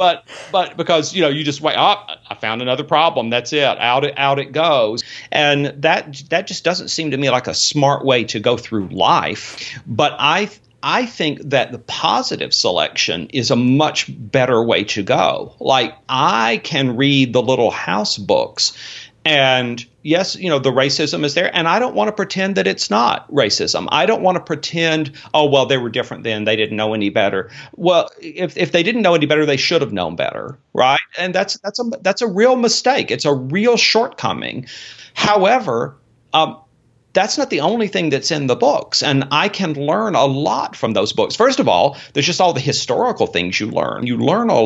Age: 40-59